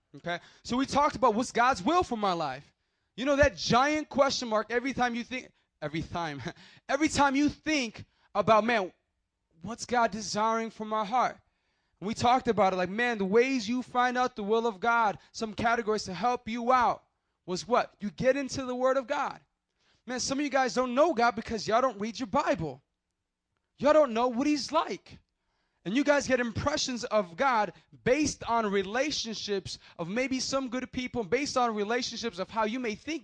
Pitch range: 200-255 Hz